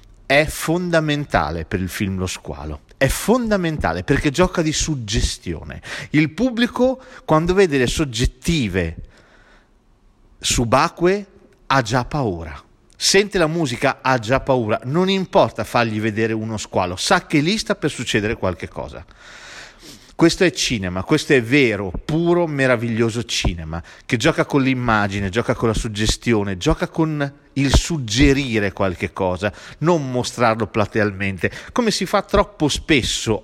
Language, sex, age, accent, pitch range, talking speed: Italian, male, 40-59, native, 110-165 Hz, 135 wpm